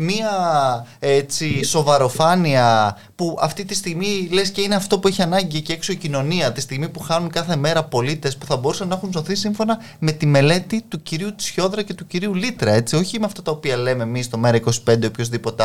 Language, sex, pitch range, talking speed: Greek, male, 130-200 Hz, 205 wpm